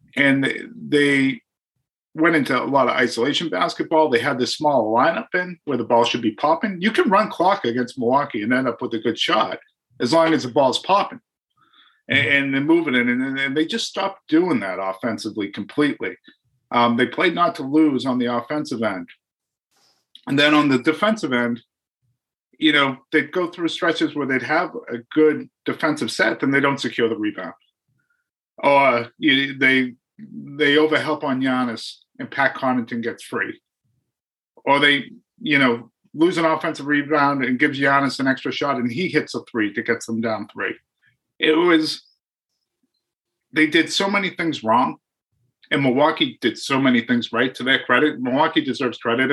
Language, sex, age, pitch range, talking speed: English, male, 50-69, 120-155 Hz, 180 wpm